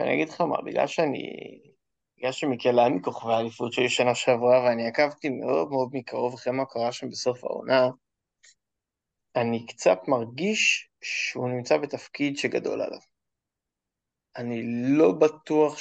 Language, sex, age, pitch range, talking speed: Hebrew, male, 20-39, 115-145 Hz, 135 wpm